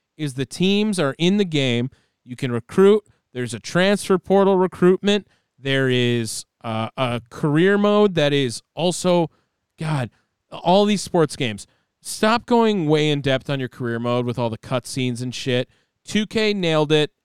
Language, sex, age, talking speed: English, male, 20-39, 165 wpm